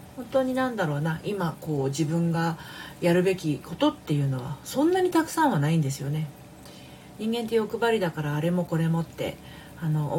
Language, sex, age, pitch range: Japanese, female, 40-59, 150-185 Hz